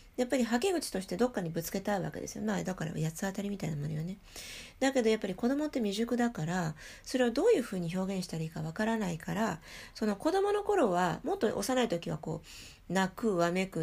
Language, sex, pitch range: Japanese, female, 165-240 Hz